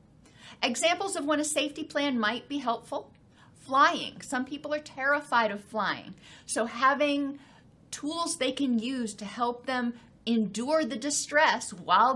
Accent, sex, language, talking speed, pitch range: American, female, English, 145 wpm, 225-285 Hz